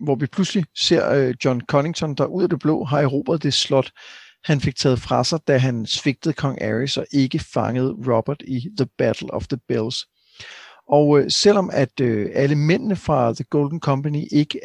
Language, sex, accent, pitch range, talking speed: Danish, male, native, 130-155 Hz, 185 wpm